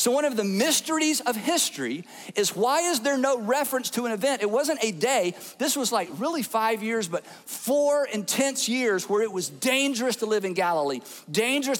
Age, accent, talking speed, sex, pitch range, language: 50-69, American, 200 wpm, male, 195-270 Hz, English